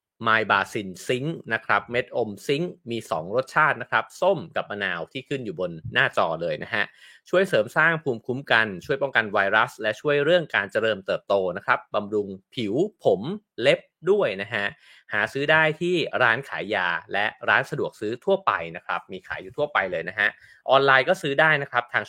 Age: 30-49